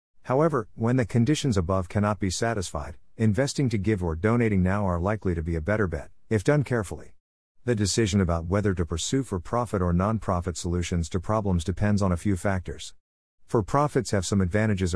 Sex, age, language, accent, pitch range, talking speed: male, 50-69, English, American, 90-110 Hz, 180 wpm